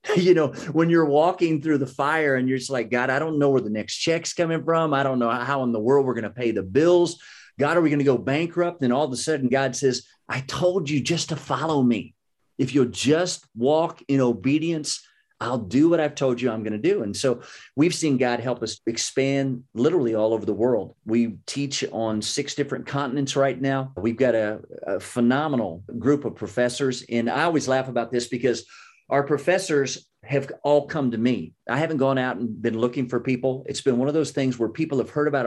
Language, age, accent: English, 40-59, American